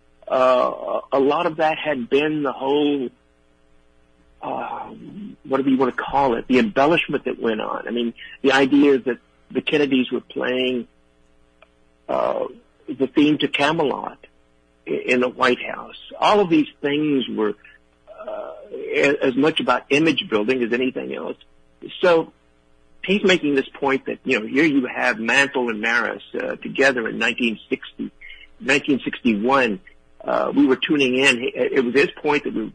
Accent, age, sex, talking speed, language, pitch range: American, 50-69, male, 155 wpm, English, 105-145 Hz